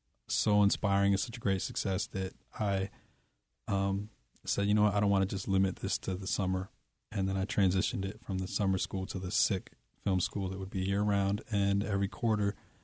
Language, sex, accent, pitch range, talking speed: English, male, American, 95-105 Hz, 210 wpm